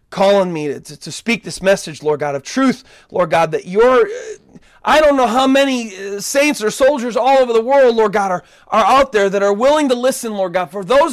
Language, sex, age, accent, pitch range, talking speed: English, male, 30-49, American, 195-275 Hz, 225 wpm